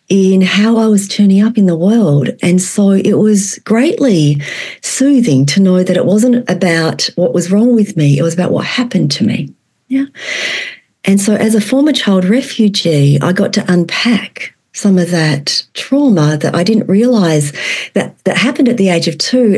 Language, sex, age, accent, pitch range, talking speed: English, female, 40-59, Australian, 175-220 Hz, 185 wpm